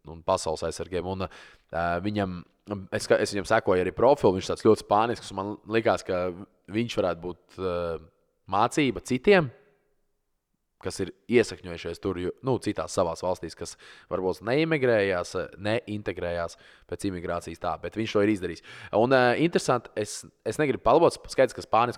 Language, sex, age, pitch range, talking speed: English, male, 20-39, 90-115 Hz, 155 wpm